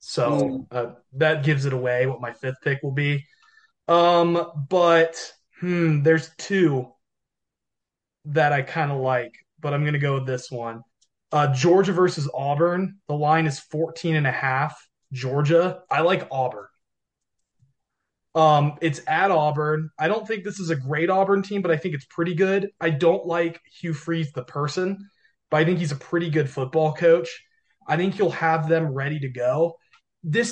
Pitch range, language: 145-180 Hz, English